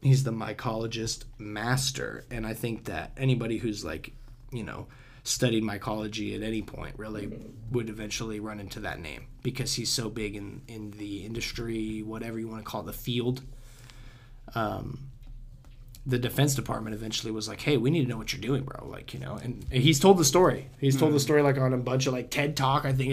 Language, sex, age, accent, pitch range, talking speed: English, male, 20-39, American, 110-130 Hz, 200 wpm